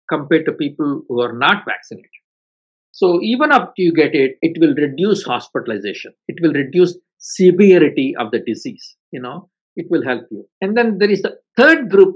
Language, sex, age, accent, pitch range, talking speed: English, male, 50-69, Indian, 135-190 Hz, 185 wpm